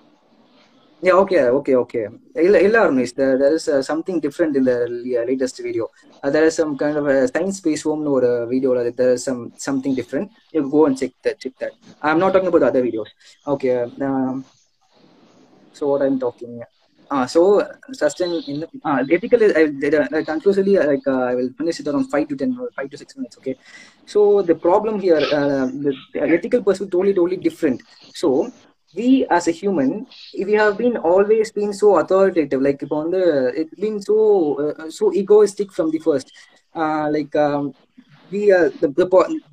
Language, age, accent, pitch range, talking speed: English, 20-39, Indian, 145-205 Hz, 195 wpm